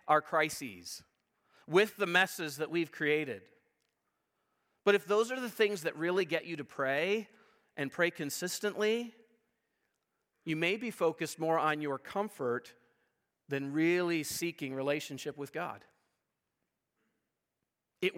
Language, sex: English, male